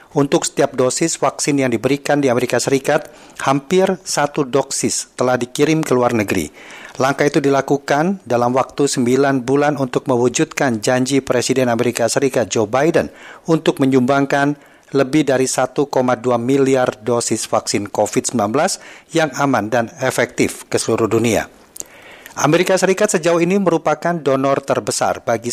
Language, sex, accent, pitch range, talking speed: Indonesian, male, native, 125-150 Hz, 130 wpm